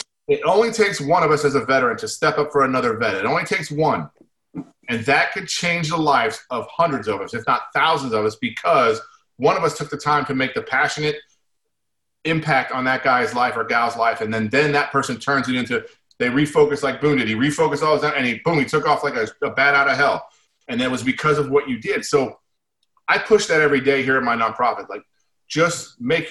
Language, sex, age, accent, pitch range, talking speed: English, male, 30-49, American, 130-170 Hz, 240 wpm